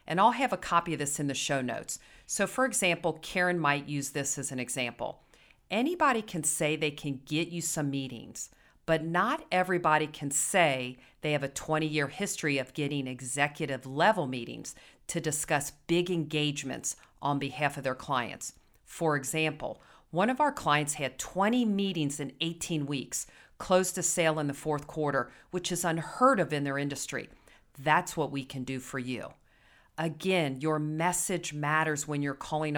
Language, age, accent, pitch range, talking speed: English, 40-59, American, 140-175 Hz, 175 wpm